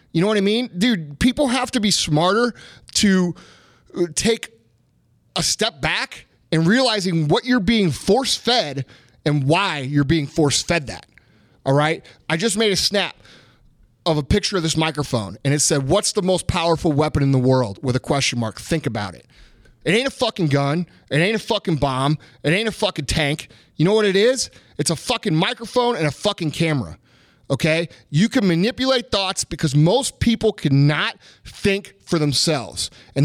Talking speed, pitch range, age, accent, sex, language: 180 wpm, 145-220 Hz, 30-49, American, male, English